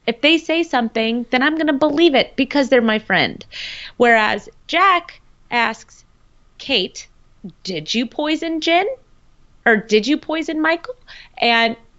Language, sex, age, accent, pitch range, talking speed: English, female, 30-49, American, 200-270 Hz, 140 wpm